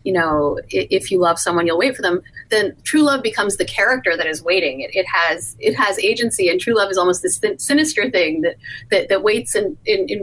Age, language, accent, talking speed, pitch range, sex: 30-49, English, American, 235 wpm, 170-255 Hz, female